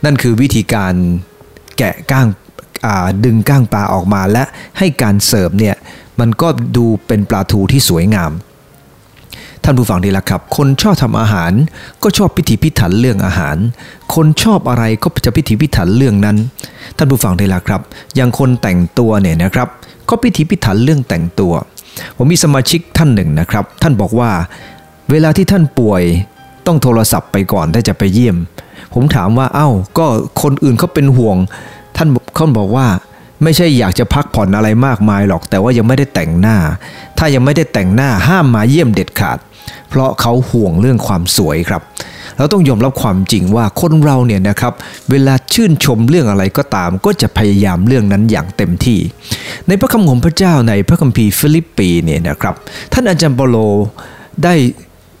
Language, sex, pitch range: English, male, 100-145 Hz